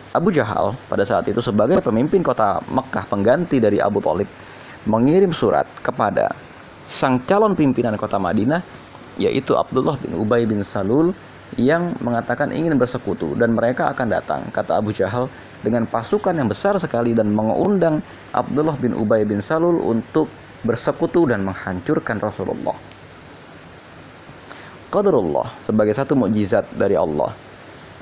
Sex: male